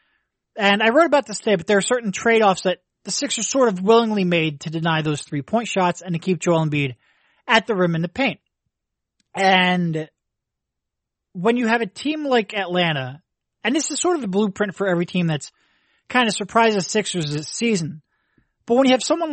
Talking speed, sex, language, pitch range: 200 wpm, male, English, 165-230 Hz